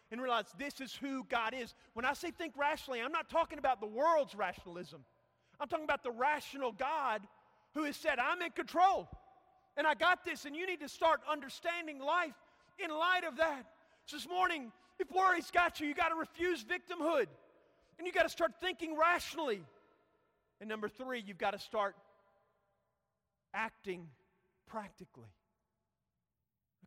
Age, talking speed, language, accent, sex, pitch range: 40-59, 165 wpm, English, American, male, 215-310 Hz